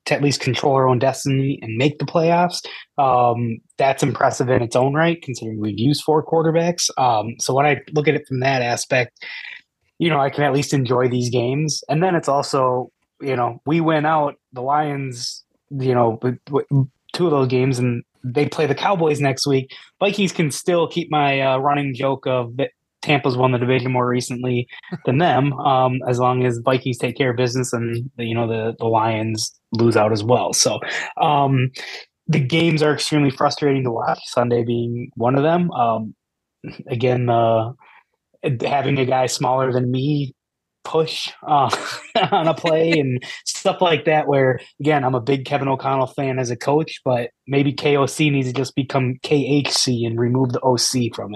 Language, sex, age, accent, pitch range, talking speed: English, male, 20-39, American, 125-145 Hz, 190 wpm